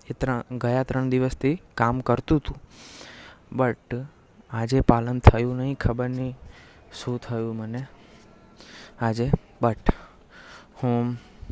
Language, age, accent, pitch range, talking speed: Gujarati, 20-39, native, 115-130 Hz, 100 wpm